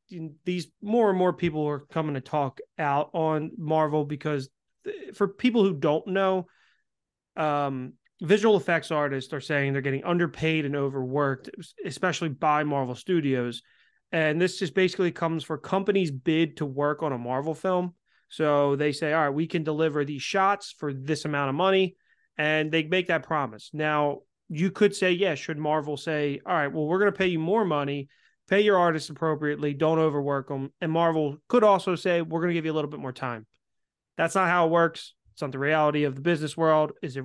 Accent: American